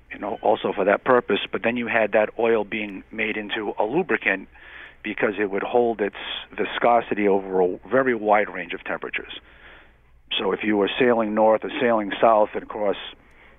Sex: male